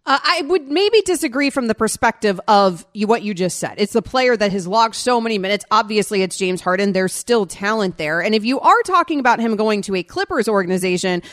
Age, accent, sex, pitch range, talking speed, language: 30-49, American, female, 200-265 Hz, 220 wpm, English